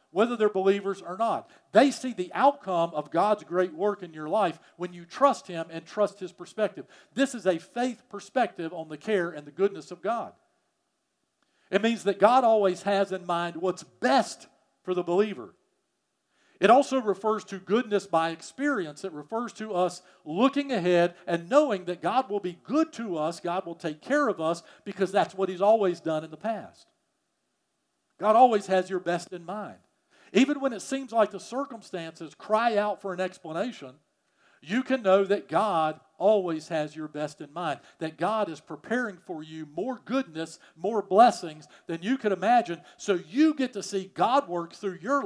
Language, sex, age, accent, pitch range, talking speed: English, male, 50-69, American, 165-220 Hz, 185 wpm